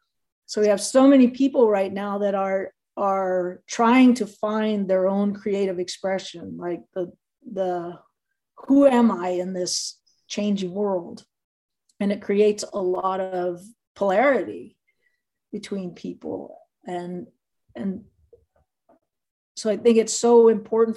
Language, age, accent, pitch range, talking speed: English, 40-59, American, 185-230 Hz, 130 wpm